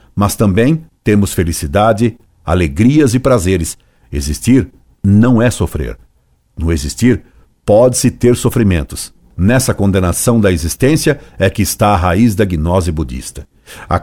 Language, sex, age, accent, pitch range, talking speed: Portuguese, male, 60-79, Brazilian, 90-120 Hz, 125 wpm